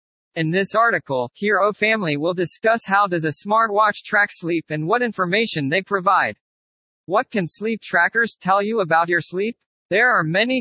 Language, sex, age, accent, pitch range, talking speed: English, male, 40-59, American, 155-215 Hz, 170 wpm